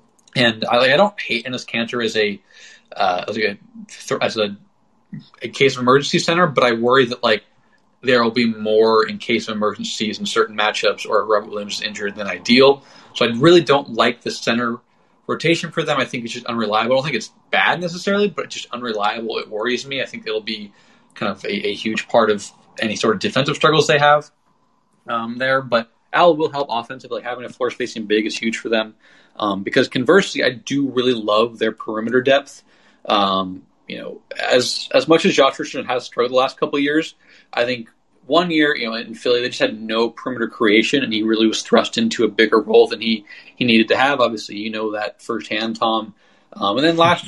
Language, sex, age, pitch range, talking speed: English, male, 20-39, 110-145 Hz, 215 wpm